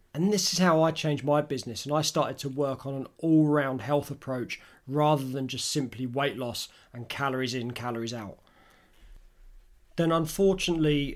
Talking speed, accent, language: 165 wpm, British, English